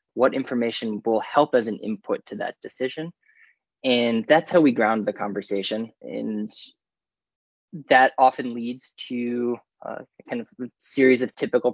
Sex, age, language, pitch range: male, 20-39, English, 105-120 Hz